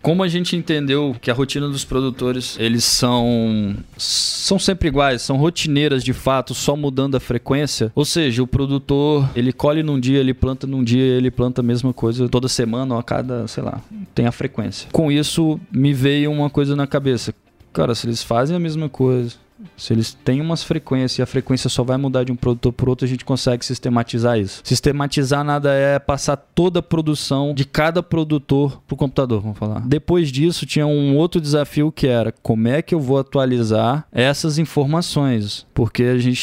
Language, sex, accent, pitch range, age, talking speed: Portuguese, male, Brazilian, 125-145 Hz, 20-39, 195 wpm